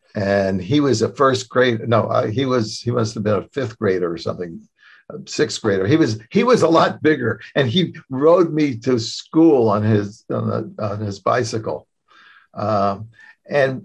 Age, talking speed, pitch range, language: 60-79, 180 wpm, 110-155 Hz, English